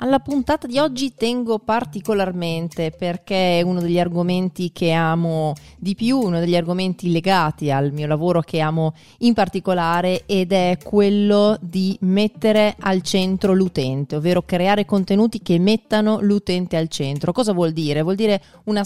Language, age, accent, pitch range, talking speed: Italian, 30-49, native, 160-200 Hz, 155 wpm